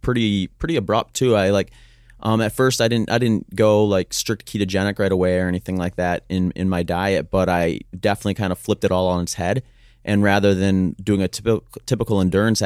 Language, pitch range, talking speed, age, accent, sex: English, 90-105 Hz, 220 wpm, 30-49, American, male